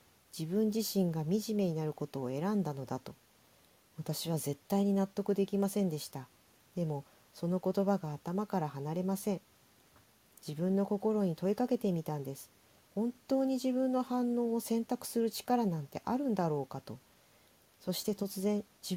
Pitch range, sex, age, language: 155-215 Hz, female, 40-59, Japanese